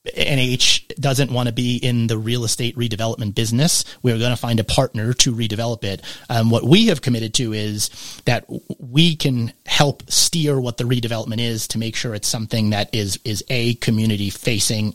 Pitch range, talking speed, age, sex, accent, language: 110-125 Hz, 190 wpm, 30-49, male, American, English